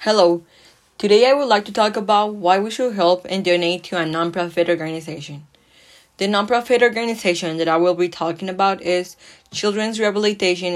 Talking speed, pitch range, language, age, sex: 165 wpm, 175-210 Hz, English, 20-39, female